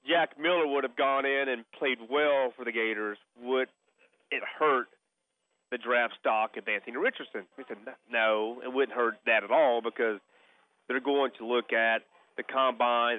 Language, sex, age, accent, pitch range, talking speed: English, male, 40-59, American, 125-180 Hz, 175 wpm